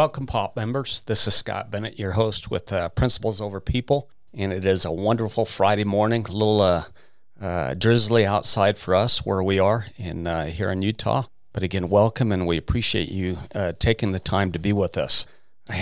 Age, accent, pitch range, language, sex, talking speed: 40-59, American, 95-115 Hz, English, male, 195 wpm